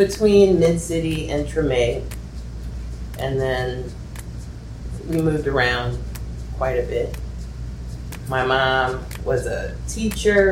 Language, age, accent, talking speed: English, 30-49, American, 95 wpm